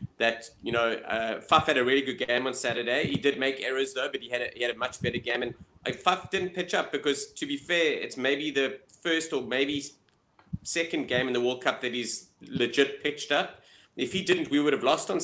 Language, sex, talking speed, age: English, male, 245 wpm, 30-49